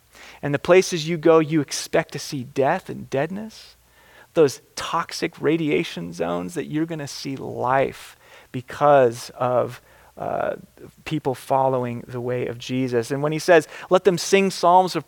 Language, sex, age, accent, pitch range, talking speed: English, male, 30-49, American, 145-190 Hz, 160 wpm